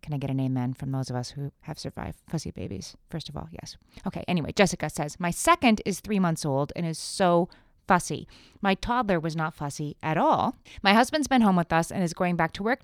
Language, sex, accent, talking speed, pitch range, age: English, female, American, 240 wpm, 155-205 Hz, 30-49